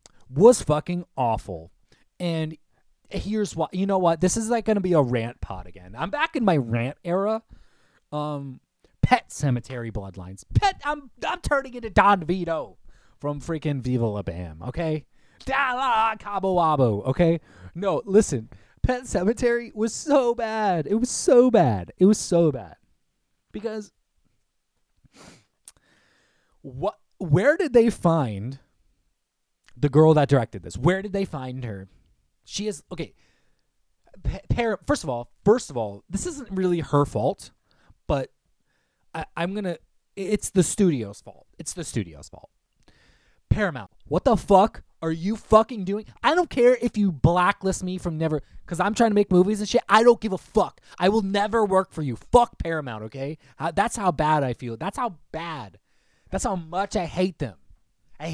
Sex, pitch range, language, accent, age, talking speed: male, 130-210 Hz, English, American, 30-49, 165 wpm